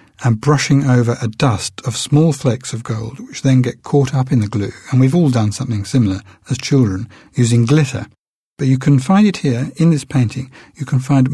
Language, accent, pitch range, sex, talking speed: English, British, 115-140 Hz, male, 210 wpm